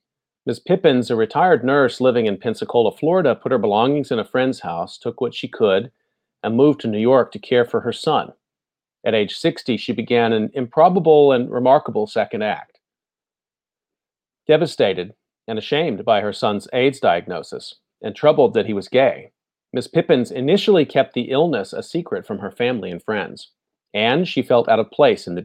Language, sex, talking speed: English, male, 180 wpm